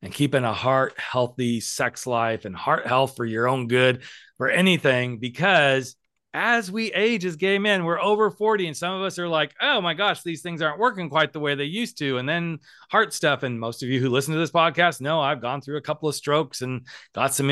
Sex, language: male, English